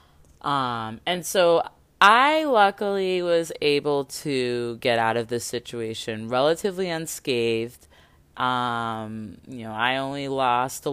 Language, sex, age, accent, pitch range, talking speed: English, female, 20-39, American, 110-145 Hz, 120 wpm